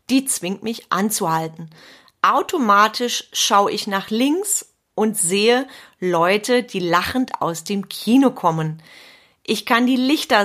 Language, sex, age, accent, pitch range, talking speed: German, female, 30-49, German, 185-245 Hz, 125 wpm